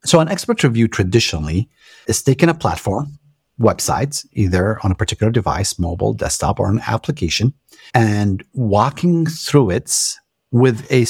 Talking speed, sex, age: 140 wpm, male, 50-69